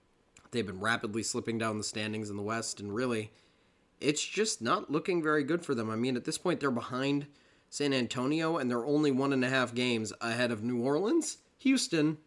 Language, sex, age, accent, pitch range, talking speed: English, male, 30-49, American, 115-140 Hz, 205 wpm